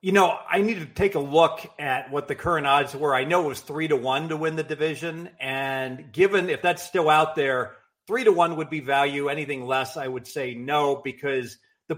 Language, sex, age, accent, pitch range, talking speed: English, male, 40-59, American, 135-170 Hz, 230 wpm